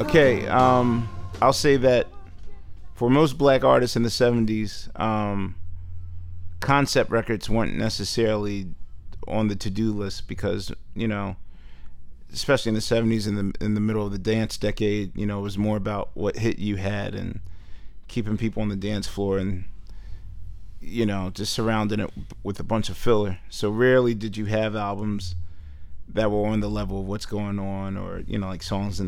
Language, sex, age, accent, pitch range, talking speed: English, male, 30-49, American, 90-110 Hz, 175 wpm